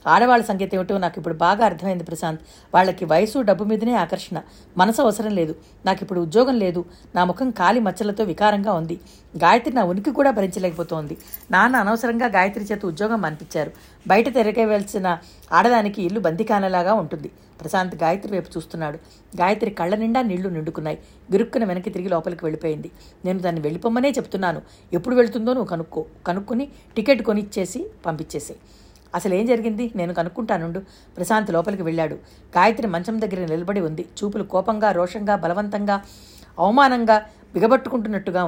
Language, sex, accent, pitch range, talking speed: Telugu, female, native, 175-225 Hz, 135 wpm